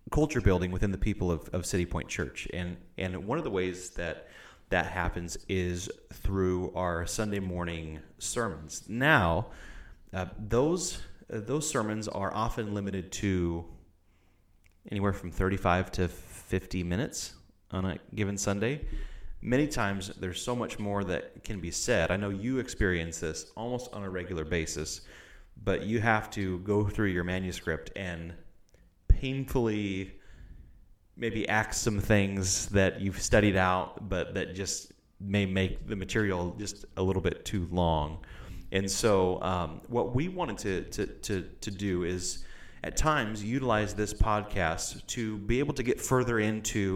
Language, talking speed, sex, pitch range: English, 155 wpm, male, 90-105 Hz